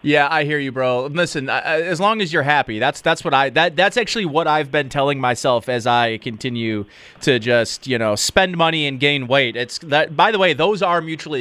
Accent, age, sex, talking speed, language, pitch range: American, 30-49, male, 225 wpm, English, 130-180 Hz